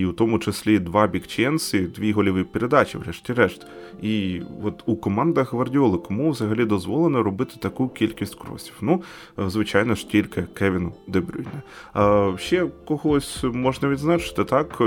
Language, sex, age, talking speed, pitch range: Ukrainian, male, 20-39, 135 wpm, 95-130 Hz